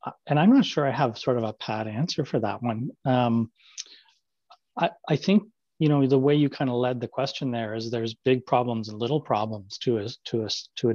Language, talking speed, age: English, 230 wpm, 30-49